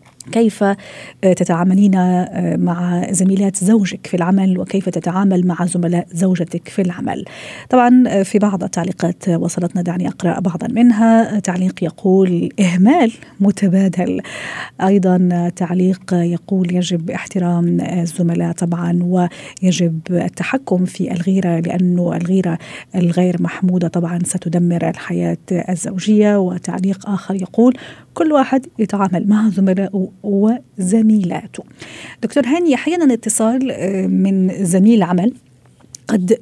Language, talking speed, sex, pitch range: Arabic, 105 wpm, female, 180-225 Hz